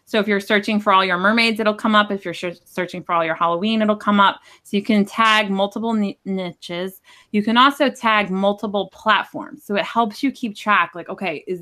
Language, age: English, 20-39